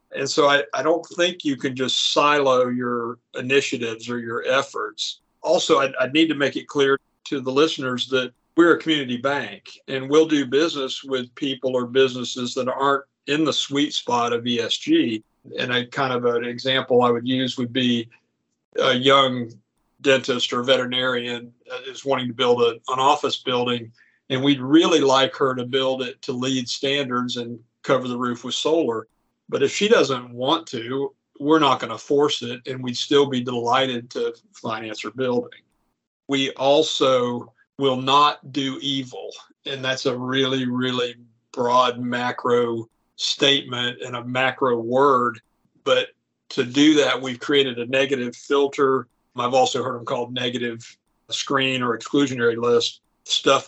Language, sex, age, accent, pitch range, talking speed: English, male, 50-69, American, 120-140 Hz, 165 wpm